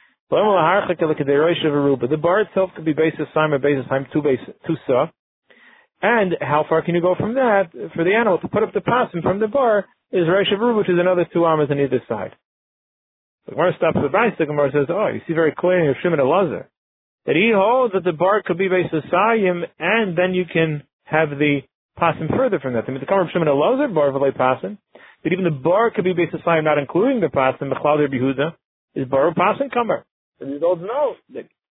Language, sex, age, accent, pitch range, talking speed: English, male, 40-59, American, 140-180 Hz, 220 wpm